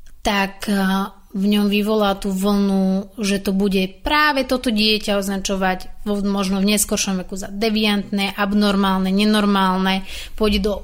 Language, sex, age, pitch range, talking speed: Slovak, female, 30-49, 195-230 Hz, 125 wpm